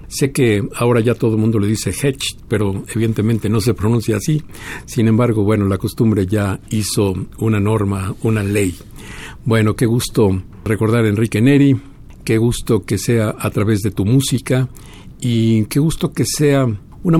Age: 60-79